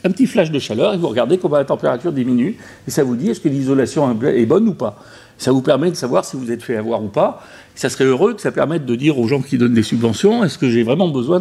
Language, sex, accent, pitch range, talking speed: French, male, French, 130-195 Hz, 285 wpm